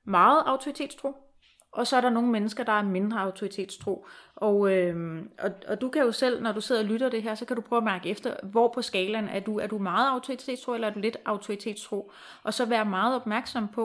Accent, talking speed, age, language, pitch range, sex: native, 225 wpm, 30-49, Danish, 185-230 Hz, female